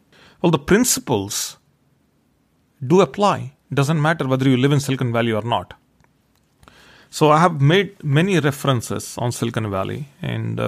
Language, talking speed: English, 145 wpm